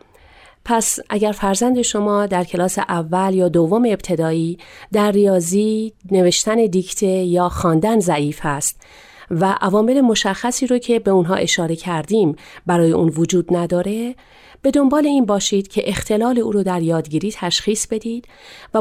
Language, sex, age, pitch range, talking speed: Persian, female, 40-59, 175-220 Hz, 140 wpm